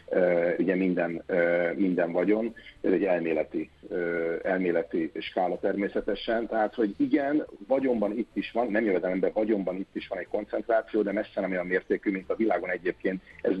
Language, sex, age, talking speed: Hungarian, male, 50-69, 170 wpm